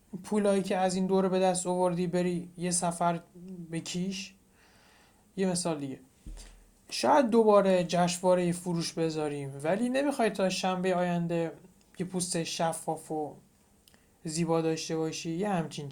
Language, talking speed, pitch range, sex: Persian, 135 wpm, 160-200 Hz, male